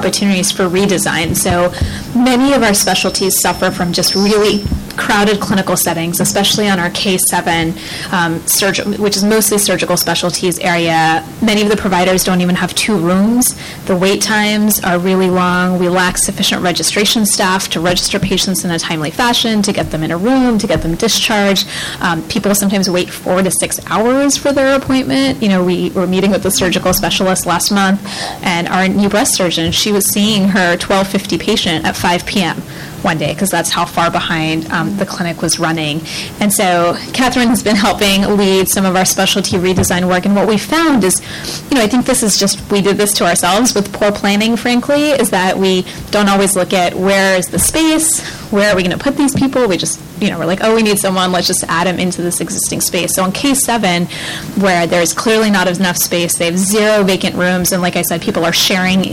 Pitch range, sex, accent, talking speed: 175-210 Hz, female, American, 210 wpm